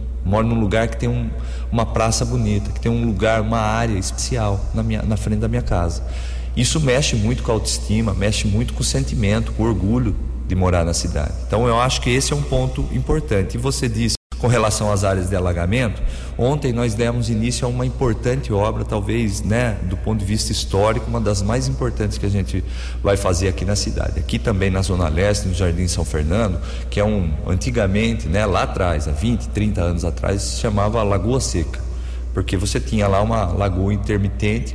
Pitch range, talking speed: 95-115 Hz, 200 wpm